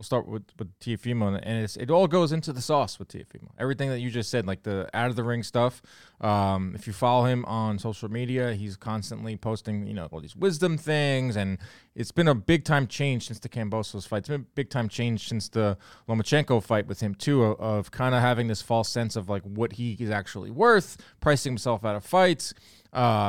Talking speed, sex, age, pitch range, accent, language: 225 wpm, male, 20-39, 105-130 Hz, American, English